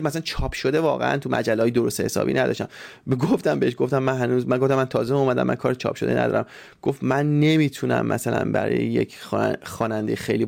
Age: 20-39